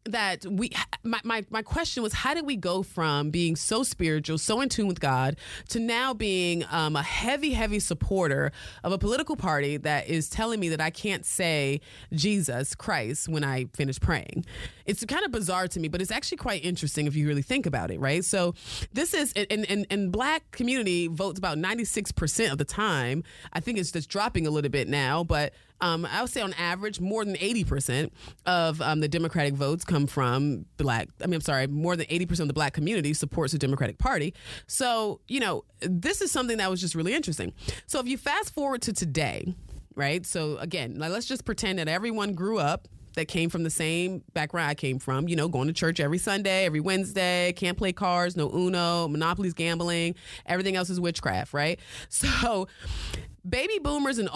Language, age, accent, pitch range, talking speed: English, 20-39, American, 150-205 Hz, 200 wpm